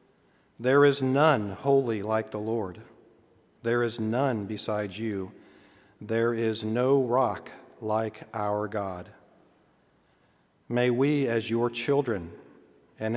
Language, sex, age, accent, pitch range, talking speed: English, male, 50-69, American, 115-135 Hz, 115 wpm